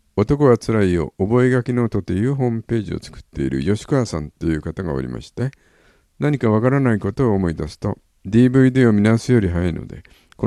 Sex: male